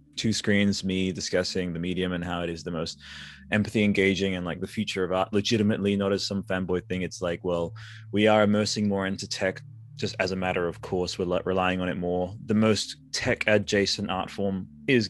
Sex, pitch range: male, 90-110 Hz